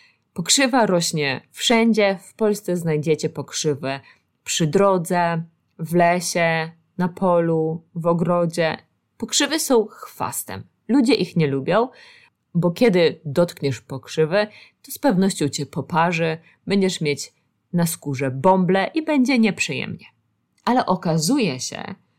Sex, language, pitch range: female, Polish, 155-210 Hz